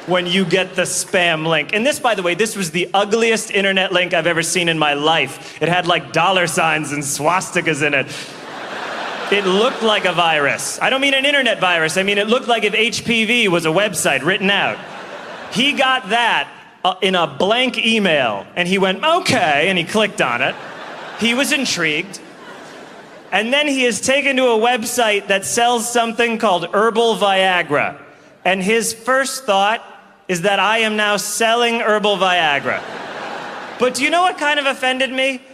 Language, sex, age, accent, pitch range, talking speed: English, male, 30-49, American, 180-235 Hz, 185 wpm